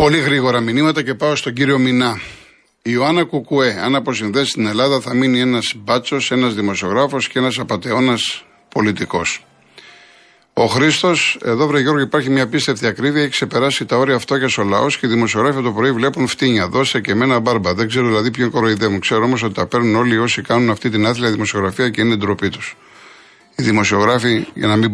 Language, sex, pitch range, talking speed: Greek, male, 110-135 Hz, 190 wpm